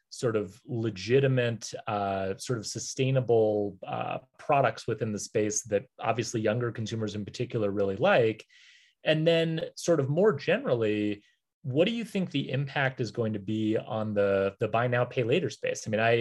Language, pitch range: English, 110-140 Hz